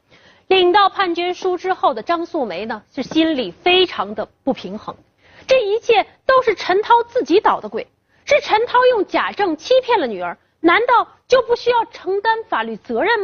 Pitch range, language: 295-410 Hz, Chinese